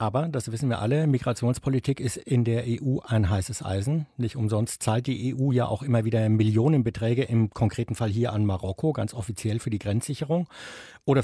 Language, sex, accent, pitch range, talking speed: German, male, German, 110-135 Hz, 185 wpm